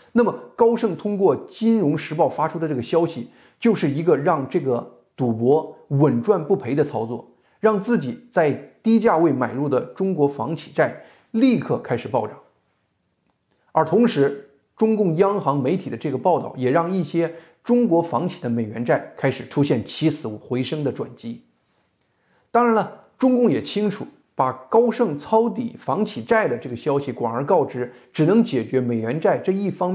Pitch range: 130-215 Hz